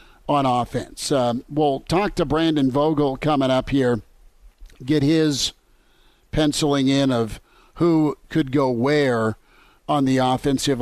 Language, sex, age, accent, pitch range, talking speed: English, male, 50-69, American, 130-150 Hz, 130 wpm